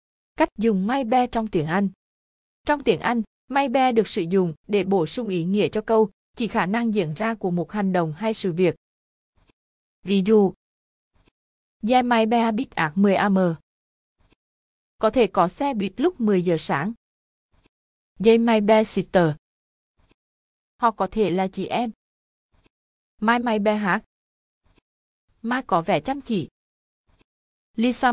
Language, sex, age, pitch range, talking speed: Vietnamese, female, 20-39, 190-235 Hz, 150 wpm